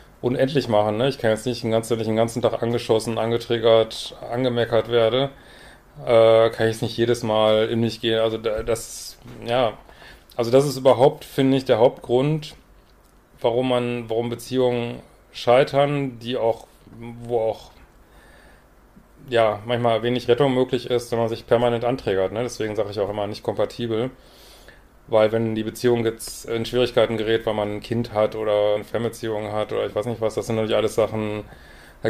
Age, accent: 30-49, German